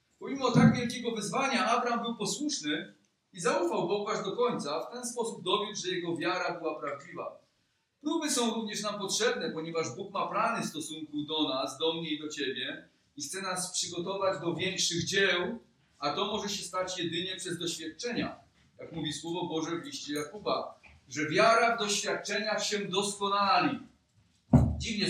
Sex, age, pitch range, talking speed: male, 40-59, 165-215 Hz, 165 wpm